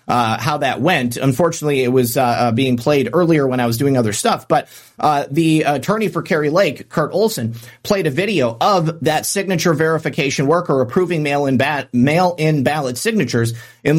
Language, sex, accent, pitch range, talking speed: English, male, American, 130-175 Hz, 185 wpm